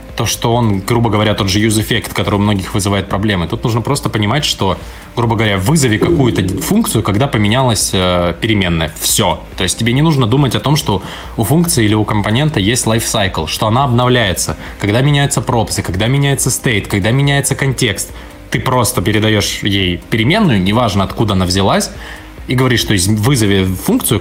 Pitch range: 100-130 Hz